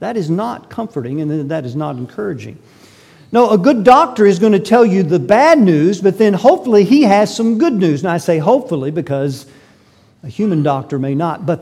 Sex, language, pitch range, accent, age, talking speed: male, English, 140-190 Hz, American, 50-69, 205 wpm